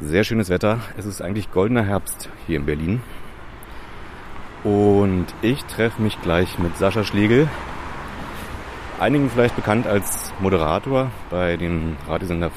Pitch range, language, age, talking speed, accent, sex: 85-115 Hz, German, 30-49, 130 wpm, German, male